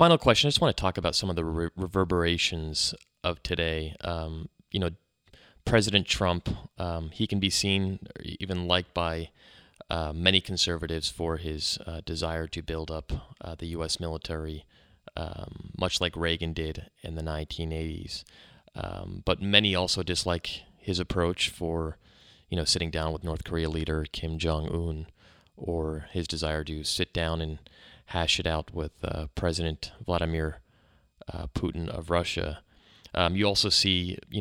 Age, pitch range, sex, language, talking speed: 20-39, 80-95 Hz, male, English, 155 wpm